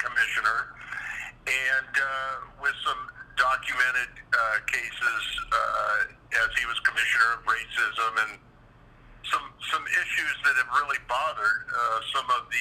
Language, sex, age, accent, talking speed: English, male, 50-69, American, 130 wpm